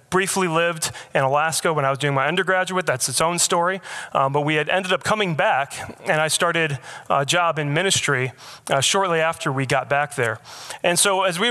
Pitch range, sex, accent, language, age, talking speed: 135-165 Hz, male, American, English, 30-49, 210 wpm